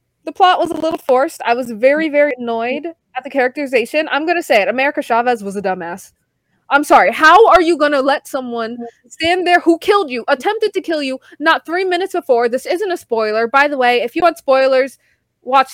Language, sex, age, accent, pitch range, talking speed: English, female, 20-39, American, 240-330 Hz, 220 wpm